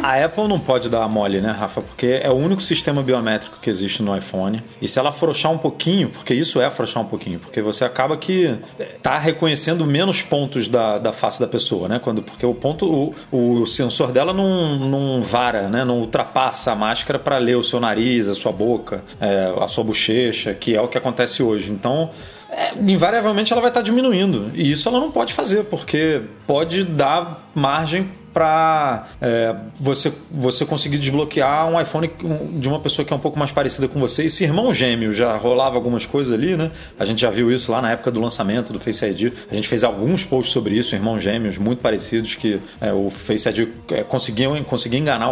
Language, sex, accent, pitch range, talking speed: Portuguese, male, Brazilian, 110-155 Hz, 210 wpm